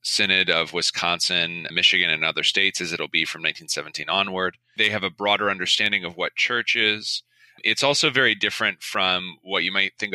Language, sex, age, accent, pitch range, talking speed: English, male, 30-49, American, 95-120 Hz, 185 wpm